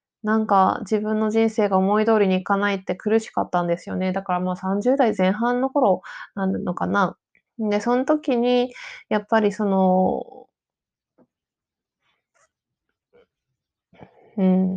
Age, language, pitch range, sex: 20-39, Japanese, 185-230 Hz, female